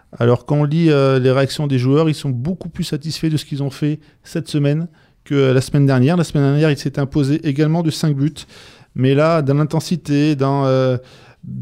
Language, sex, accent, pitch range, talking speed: French, male, French, 125-155 Hz, 210 wpm